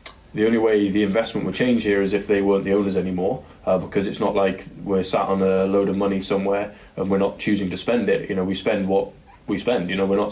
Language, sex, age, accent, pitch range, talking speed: English, male, 20-39, British, 100-105 Hz, 265 wpm